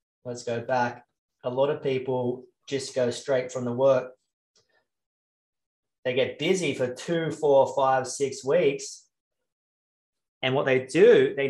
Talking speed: 140 wpm